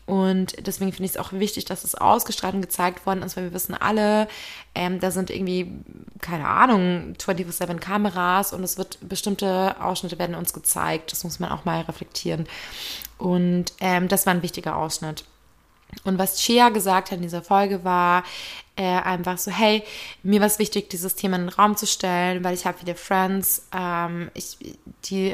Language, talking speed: German, 185 wpm